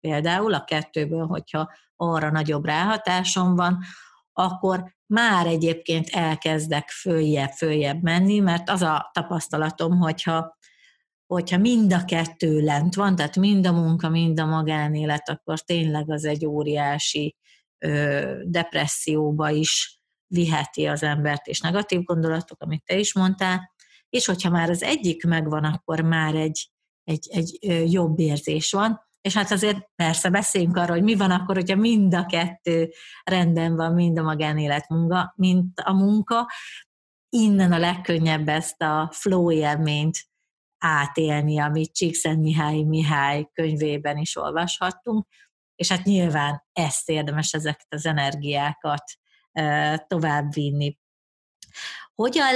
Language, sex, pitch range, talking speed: Hungarian, female, 155-185 Hz, 125 wpm